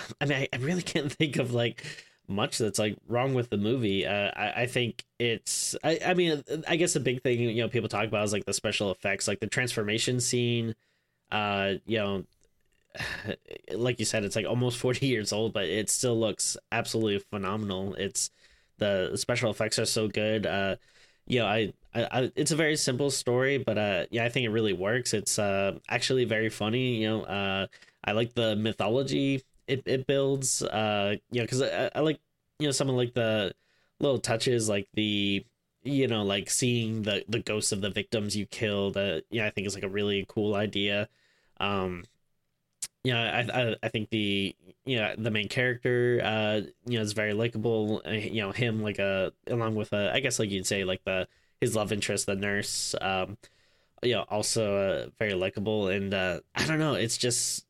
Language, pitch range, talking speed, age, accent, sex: English, 105-125 Hz, 205 wpm, 10-29, American, male